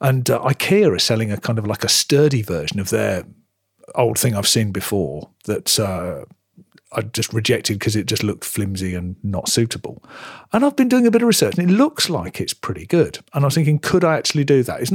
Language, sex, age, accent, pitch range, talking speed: English, male, 40-59, British, 110-145 Hz, 230 wpm